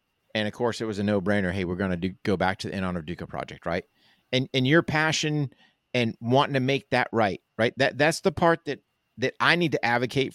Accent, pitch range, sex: American, 105-135 Hz, male